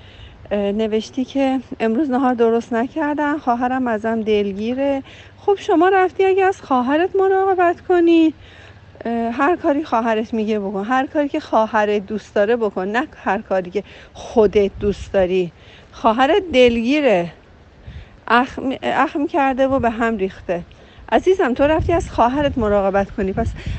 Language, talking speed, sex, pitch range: Persian, 135 wpm, female, 210-295 Hz